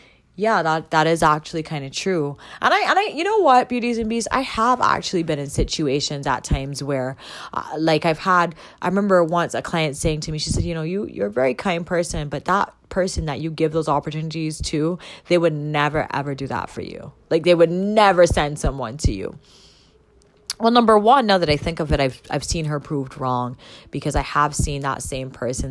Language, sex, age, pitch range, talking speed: English, female, 20-39, 135-180 Hz, 225 wpm